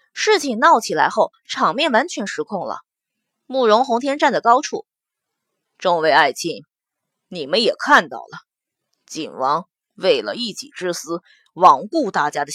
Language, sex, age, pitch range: Chinese, female, 20-39, 190-310 Hz